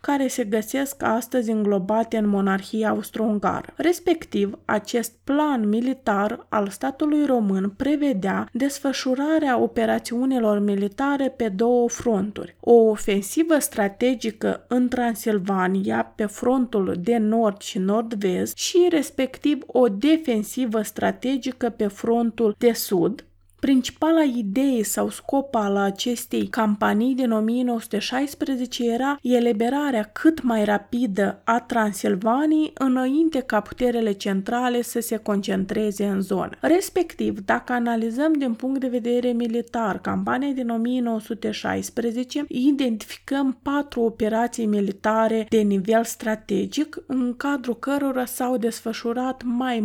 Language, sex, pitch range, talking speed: Romanian, female, 215-260 Hz, 110 wpm